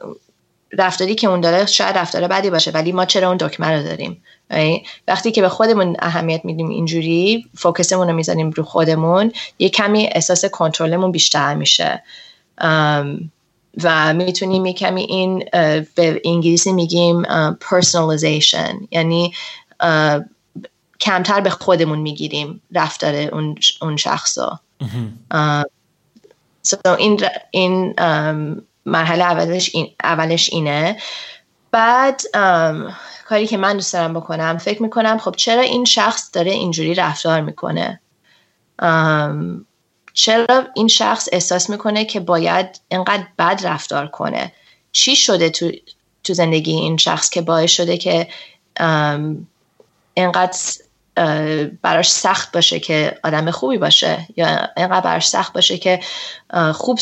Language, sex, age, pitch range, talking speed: Persian, female, 30-49, 160-190 Hz, 120 wpm